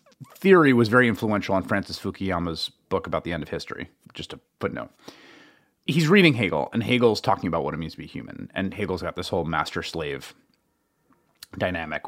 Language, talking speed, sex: English, 185 wpm, male